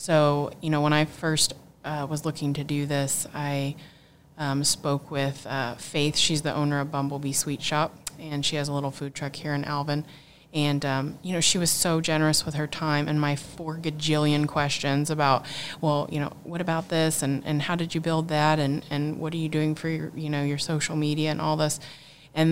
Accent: American